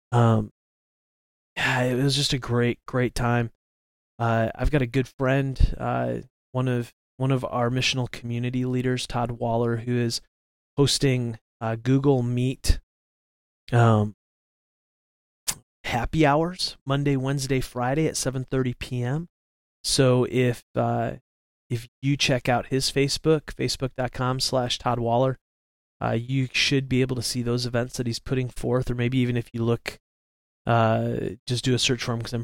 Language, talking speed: English, 150 wpm